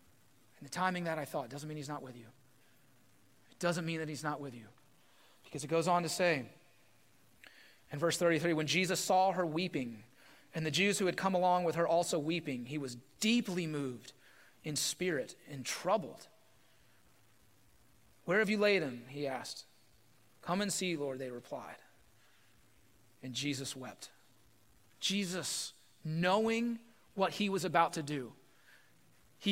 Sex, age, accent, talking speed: male, 30-49, American, 160 wpm